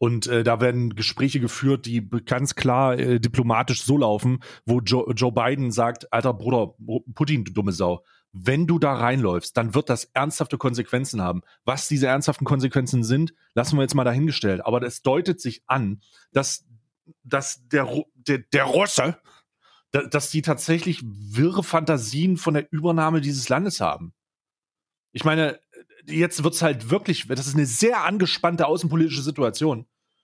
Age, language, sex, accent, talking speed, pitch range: 30-49, German, male, German, 160 wpm, 120-155 Hz